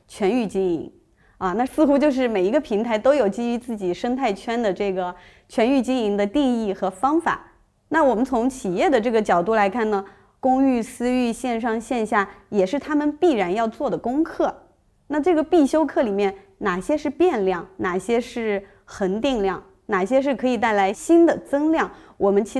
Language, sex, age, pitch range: Chinese, female, 30-49, 195-265 Hz